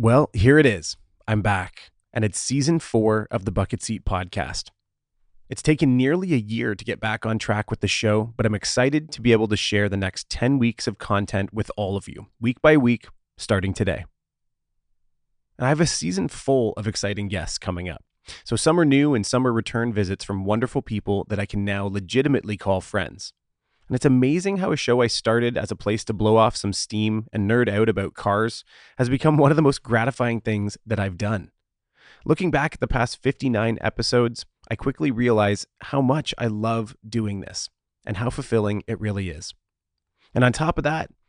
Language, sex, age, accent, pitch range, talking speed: English, male, 30-49, American, 100-125 Hz, 205 wpm